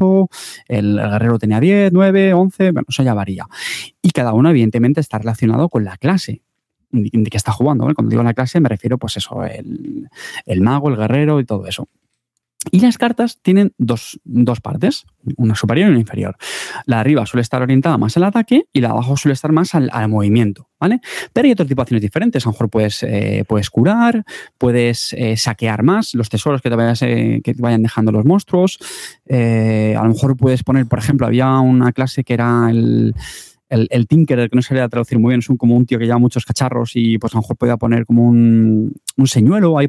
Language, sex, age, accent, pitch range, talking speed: Spanish, male, 20-39, Spanish, 115-160 Hz, 225 wpm